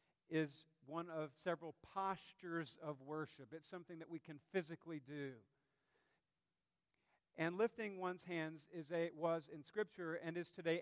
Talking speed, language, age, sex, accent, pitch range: 135 wpm, English, 50-69, male, American, 145-175 Hz